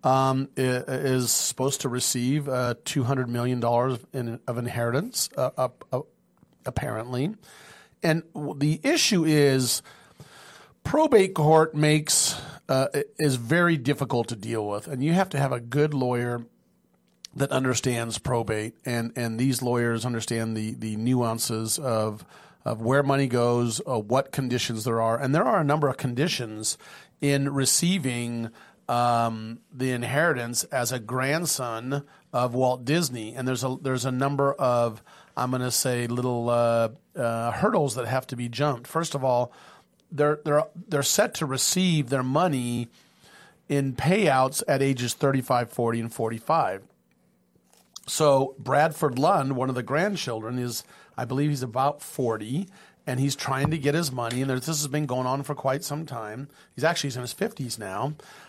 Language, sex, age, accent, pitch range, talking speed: English, male, 40-59, American, 120-145 Hz, 160 wpm